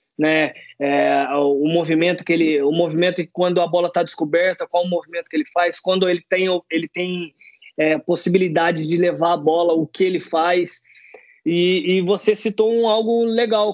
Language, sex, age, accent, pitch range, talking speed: Portuguese, male, 20-39, Brazilian, 160-185 Hz, 180 wpm